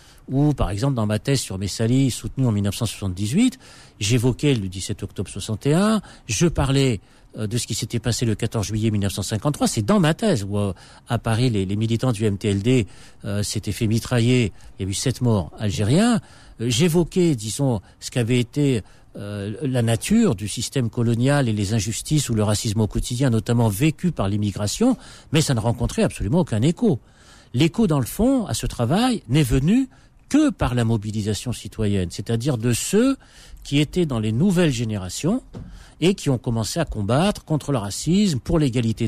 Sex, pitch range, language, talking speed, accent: male, 110-155 Hz, French, 180 wpm, French